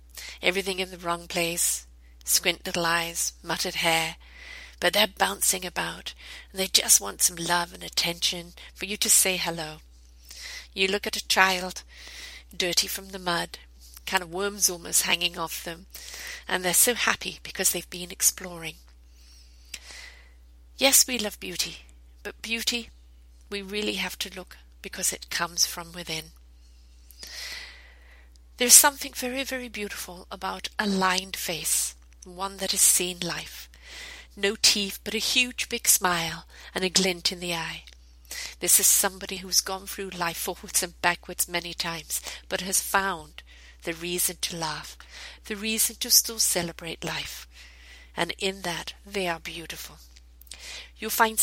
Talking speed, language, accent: 150 wpm, English, British